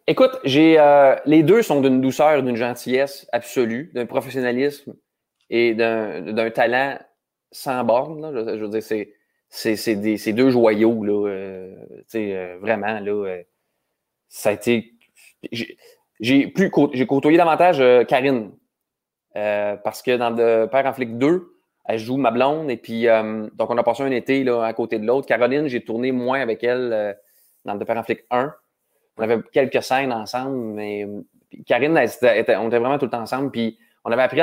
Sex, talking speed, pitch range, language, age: male, 180 wpm, 110-130 Hz, French, 20-39